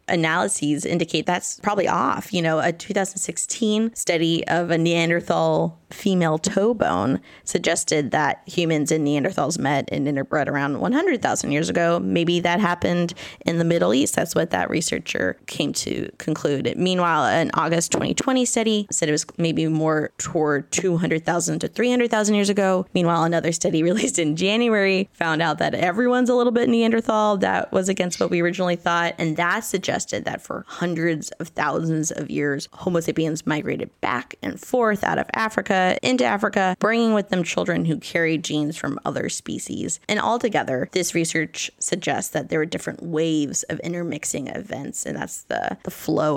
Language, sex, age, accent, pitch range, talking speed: English, female, 20-39, American, 160-190 Hz, 165 wpm